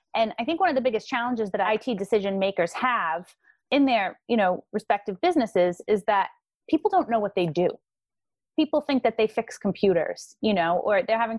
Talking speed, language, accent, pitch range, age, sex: 200 wpm, English, American, 185-245 Hz, 30-49, female